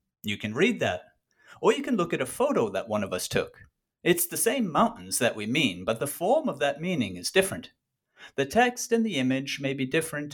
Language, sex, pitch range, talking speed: English, male, 125-190 Hz, 225 wpm